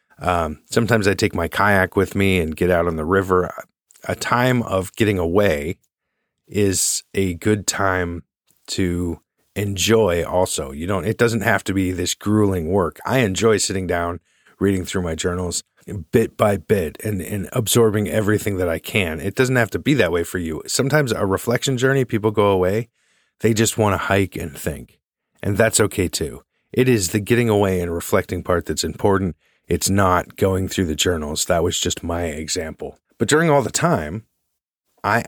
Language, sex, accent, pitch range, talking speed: English, male, American, 90-110 Hz, 185 wpm